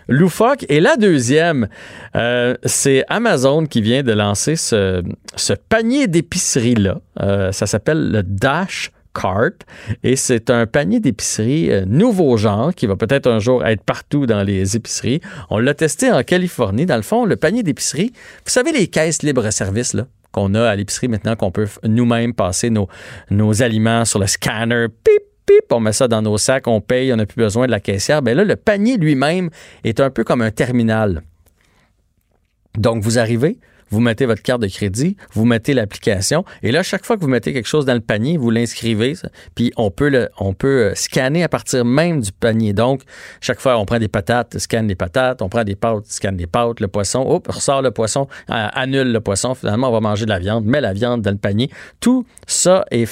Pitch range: 105-140 Hz